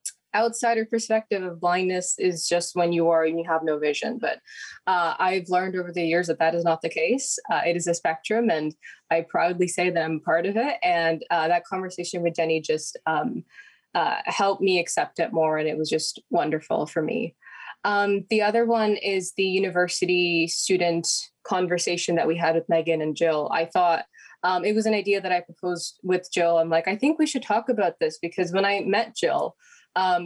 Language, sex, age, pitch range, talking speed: English, female, 20-39, 165-195 Hz, 210 wpm